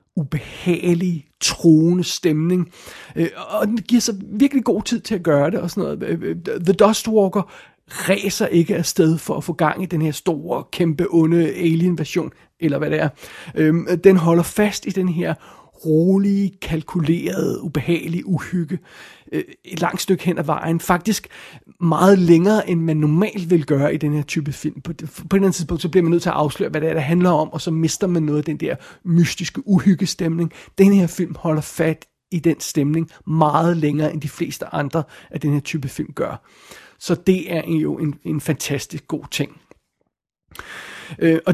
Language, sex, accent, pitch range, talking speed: Danish, male, native, 155-185 Hz, 180 wpm